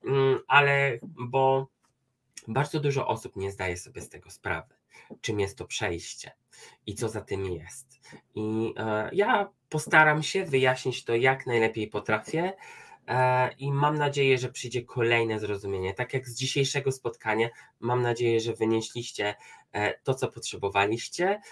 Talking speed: 135 wpm